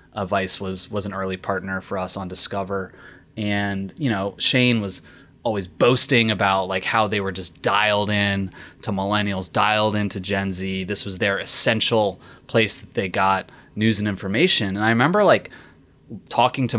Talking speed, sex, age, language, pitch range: 175 wpm, male, 20-39, English, 95-125 Hz